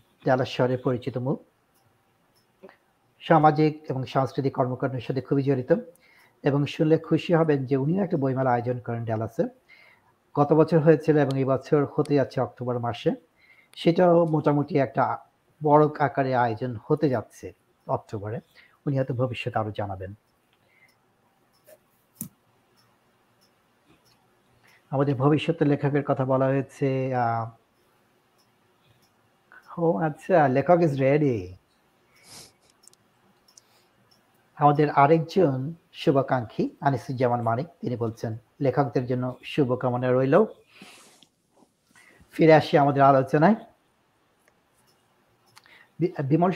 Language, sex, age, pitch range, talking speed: Bengali, male, 60-79, 125-155 Hz, 50 wpm